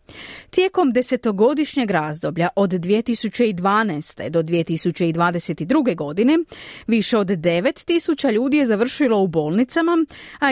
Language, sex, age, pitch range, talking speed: Croatian, female, 30-49, 185-275 Hz, 95 wpm